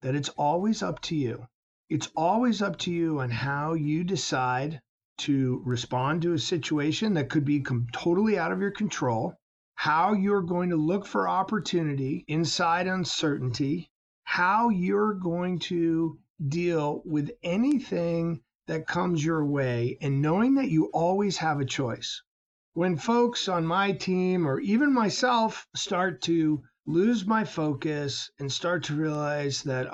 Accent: American